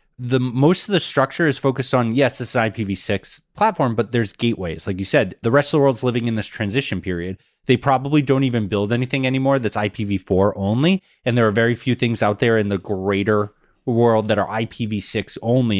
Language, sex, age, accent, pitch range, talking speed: English, male, 30-49, American, 100-130 Hz, 215 wpm